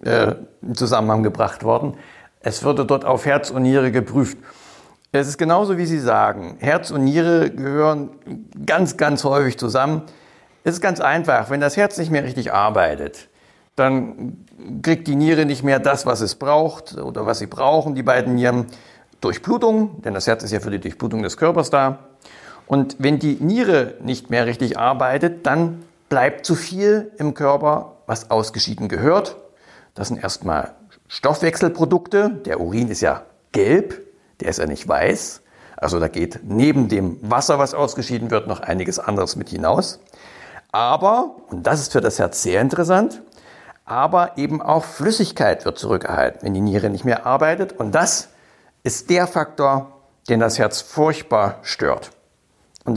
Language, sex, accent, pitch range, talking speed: German, male, German, 125-170 Hz, 160 wpm